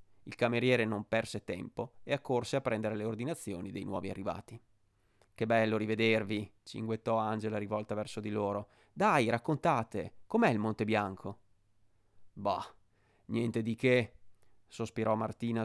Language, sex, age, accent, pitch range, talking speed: Italian, male, 30-49, native, 105-115 Hz, 135 wpm